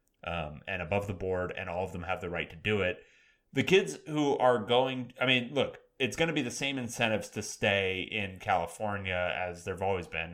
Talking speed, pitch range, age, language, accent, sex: 225 wpm, 100-130 Hz, 30-49, English, American, male